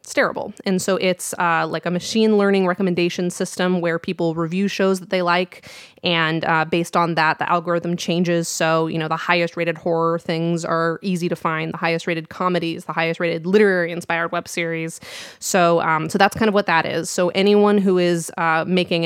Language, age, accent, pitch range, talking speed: English, 20-39, American, 170-190 Hz, 205 wpm